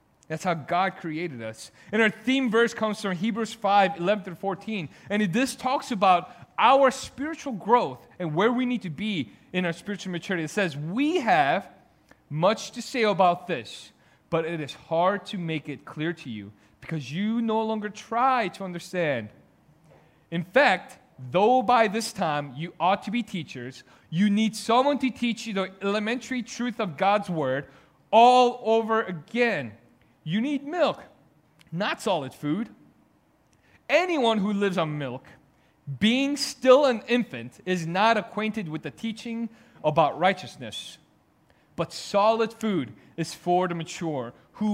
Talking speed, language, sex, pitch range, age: 155 wpm, English, male, 160-225 Hz, 30-49